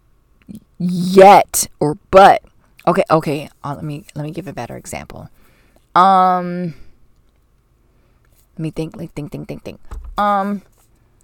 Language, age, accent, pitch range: English, 20-39, American, 145-200 Hz